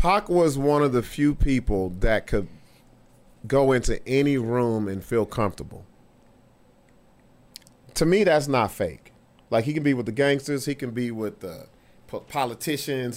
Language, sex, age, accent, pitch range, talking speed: English, male, 40-59, American, 125-180 Hz, 155 wpm